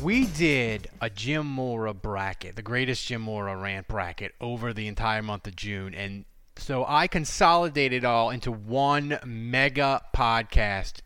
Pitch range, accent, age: 115-160 Hz, American, 30-49